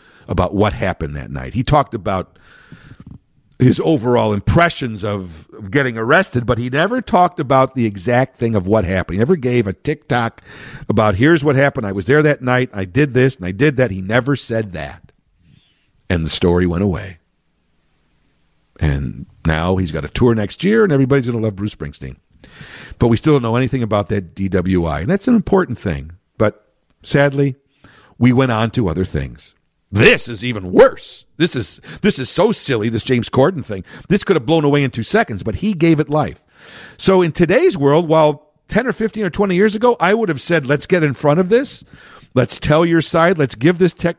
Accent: American